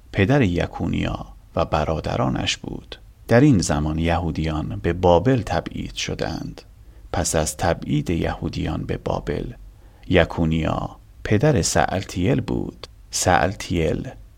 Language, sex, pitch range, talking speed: Persian, male, 80-105 Hz, 100 wpm